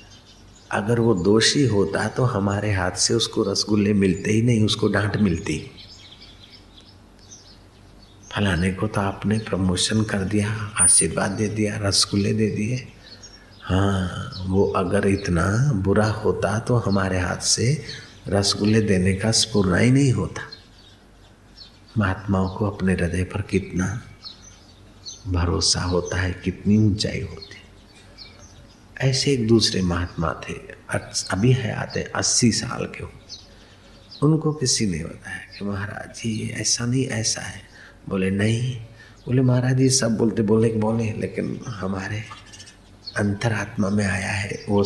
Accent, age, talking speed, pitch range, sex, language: native, 50-69, 130 wpm, 100-110 Hz, male, Hindi